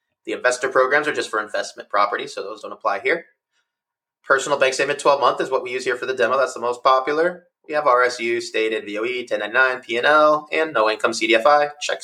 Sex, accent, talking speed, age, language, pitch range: male, American, 210 wpm, 30-49, English, 115-170 Hz